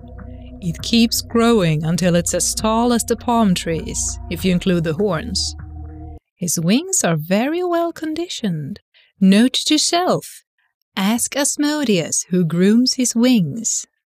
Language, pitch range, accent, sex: English, 145-210 Hz, Swedish, female